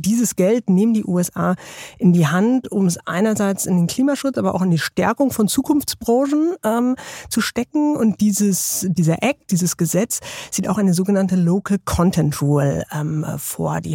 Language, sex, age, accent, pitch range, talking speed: German, female, 50-69, German, 165-220 Hz, 170 wpm